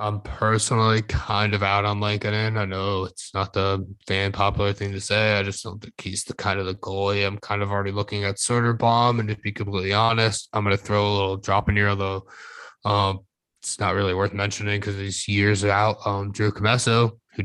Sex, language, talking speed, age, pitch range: male, English, 215 wpm, 20-39, 100-105 Hz